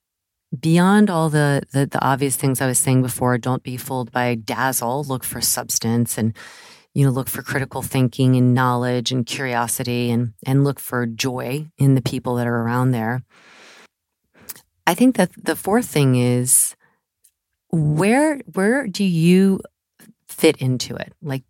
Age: 40-59